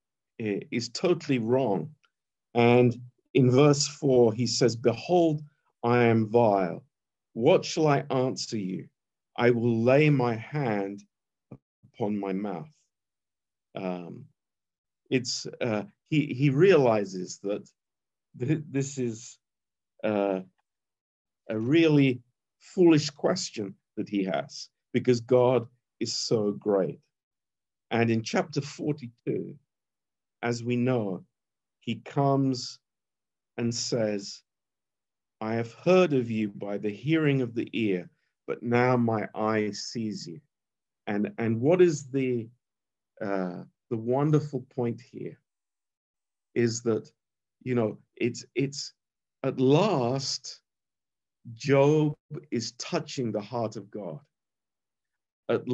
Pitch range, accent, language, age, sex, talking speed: 110-140 Hz, British, Romanian, 50-69, male, 110 wpm